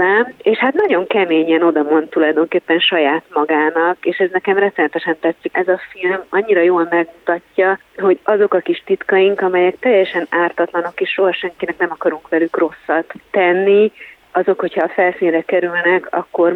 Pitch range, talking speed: 165-190 Hz, 150 wpm